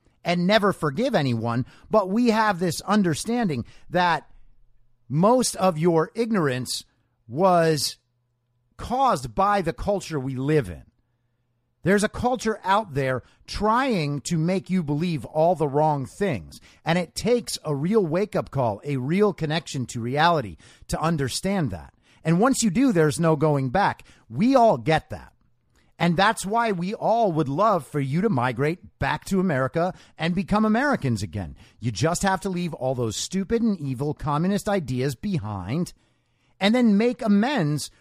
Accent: American